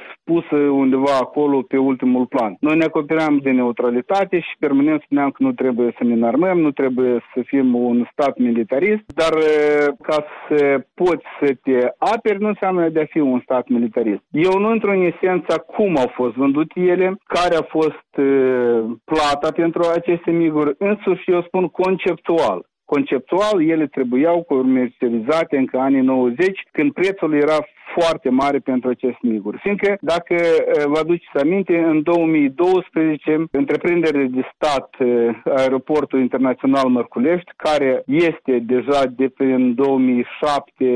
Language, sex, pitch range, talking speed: Romanian, male, 130-165 Hz, 145 wpm